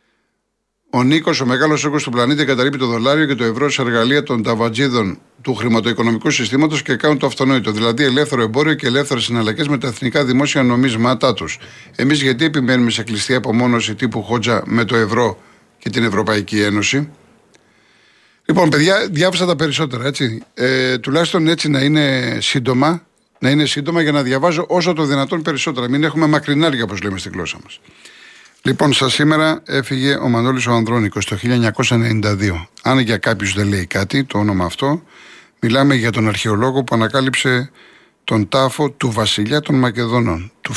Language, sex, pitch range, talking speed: Greek, male, 115-140 Hz, 170 wpm